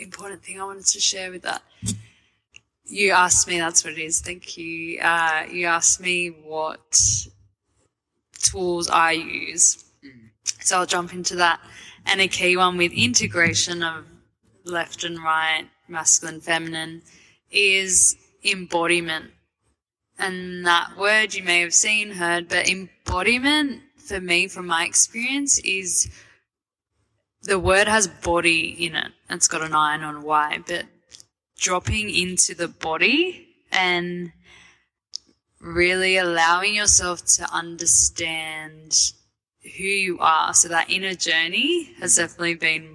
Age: 10-29